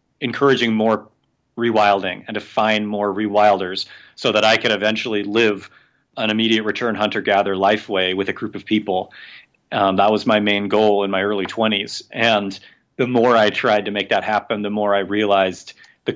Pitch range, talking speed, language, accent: 100-115 Hz, 185 wpm, English, American